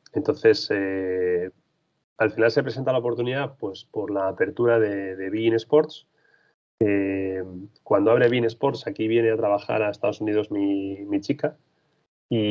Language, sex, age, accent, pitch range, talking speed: Spanish, male, 30-49, Spanish, 100-120 Hz, 155 wpm